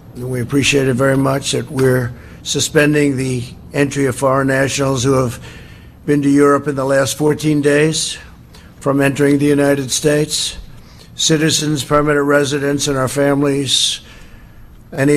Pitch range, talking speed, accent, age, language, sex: 125-145 Hz, 140 wpm, American, 60-79, English, male